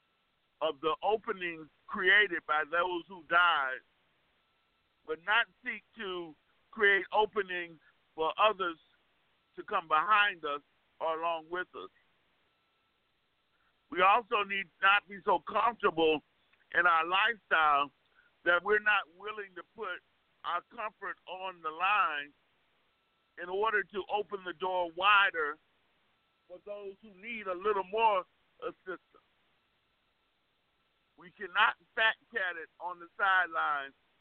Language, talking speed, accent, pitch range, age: English, 120 wpm, American, 160-205 Hz, 50-69